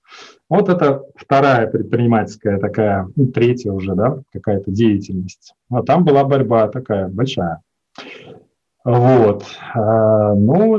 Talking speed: 110 wpm